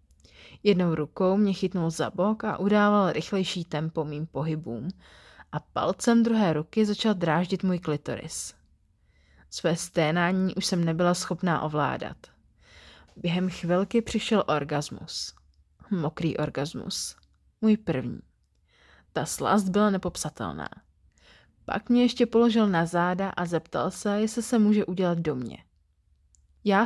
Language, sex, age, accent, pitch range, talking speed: Czech, female, 30-49, native, 150-205 Hz, 125 wpm